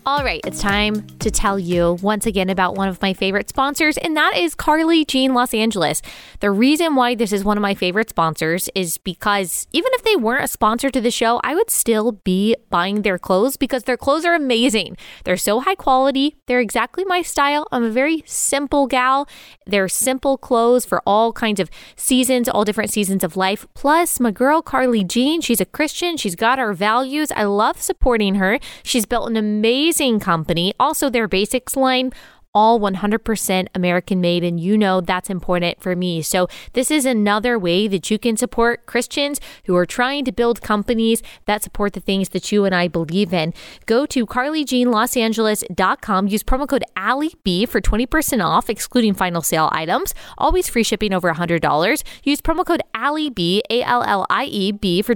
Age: 20-39